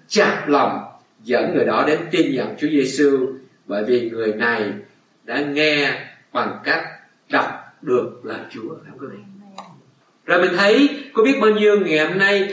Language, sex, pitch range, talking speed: Vietnamese, male, 150-225 Hz, 155 wpm